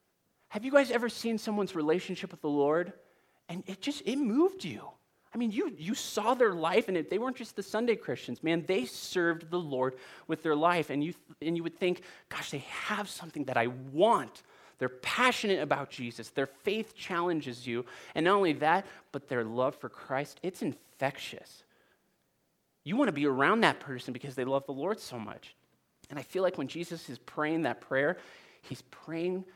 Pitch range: 130-175 Hz